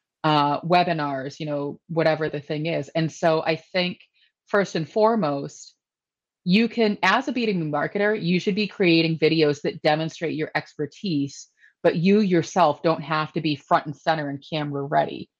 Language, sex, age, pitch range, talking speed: English, female, 30-49, 155-185 Hz, 170 wpm